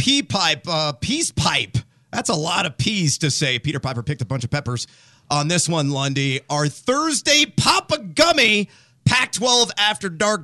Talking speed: 180 wpm